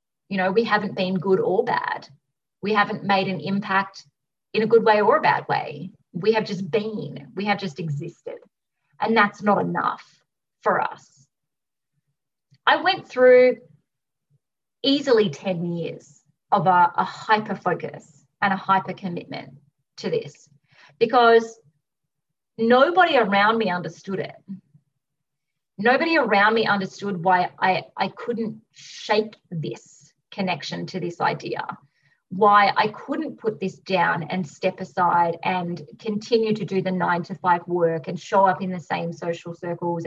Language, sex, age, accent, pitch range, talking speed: English, female, 30-49, Australian, 165-215 Hz, 145 wpm